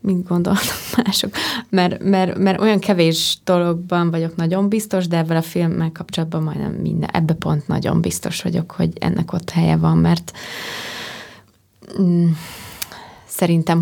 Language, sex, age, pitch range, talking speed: Hungarian, female, 20-39, 160-180 Hz, 130 wpm